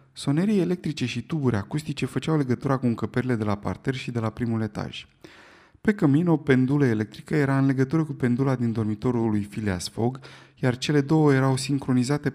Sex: male